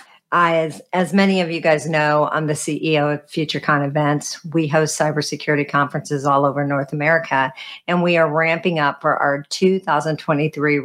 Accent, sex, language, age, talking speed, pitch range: American, female, English, 50-69, 160 wpm, 145-175 Hz